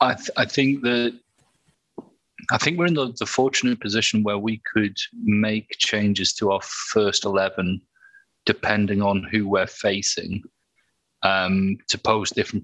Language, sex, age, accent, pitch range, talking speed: English, male, 30-49, British, 100-120 Hz, 145 wpm